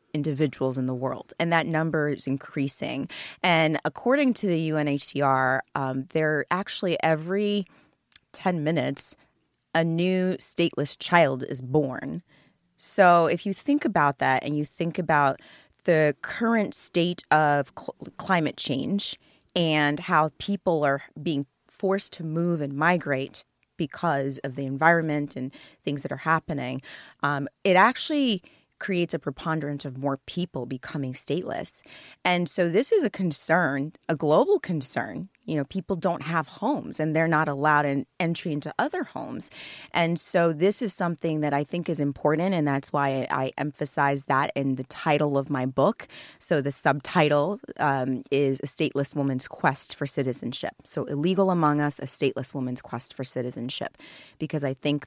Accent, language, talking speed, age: American, English, 155 wpm, 30-49